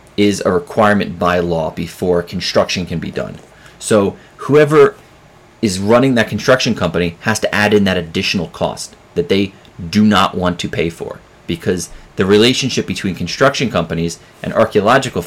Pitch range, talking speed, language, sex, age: 90-120 Hz, 155 wpm, English, male, 30-49